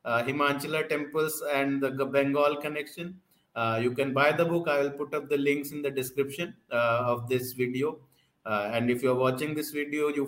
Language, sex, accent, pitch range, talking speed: Hindi, male, native, 135-160 Hz, 205 wpm